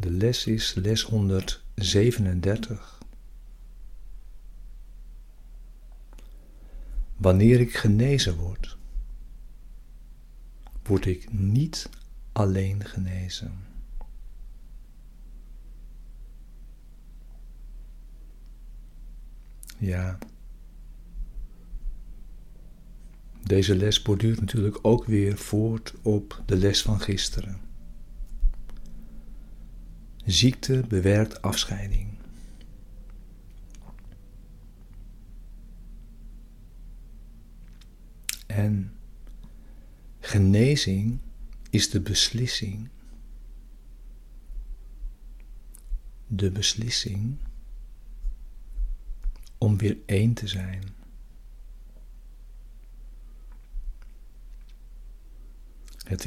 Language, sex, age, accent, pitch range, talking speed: Dutch, male, 60-79, Dutch, 95-110 Hz, 45 wpm